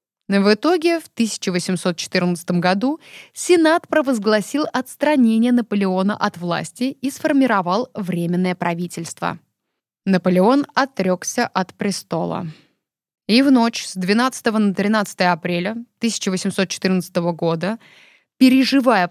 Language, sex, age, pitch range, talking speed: Russian, female, 20-39, 180-240 Hz, 95 wpm